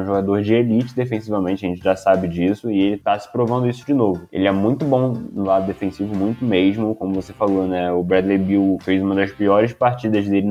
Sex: male